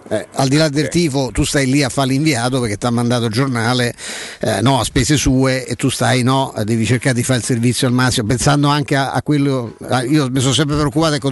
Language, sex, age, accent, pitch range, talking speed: Italian, male, 50-69, native, 130-160 Hz, 245 wpm